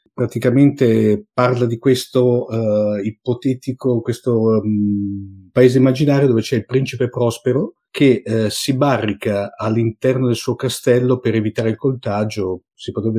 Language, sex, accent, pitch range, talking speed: Italian, male, native, 110-125 Hz, 130 wpm